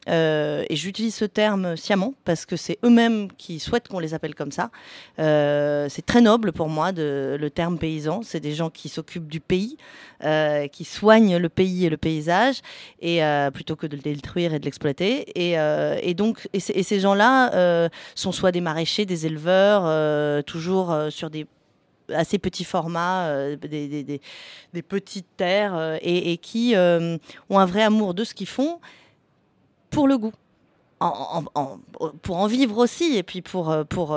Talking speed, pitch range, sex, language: 190 wpm, 155-205 Hz, female, French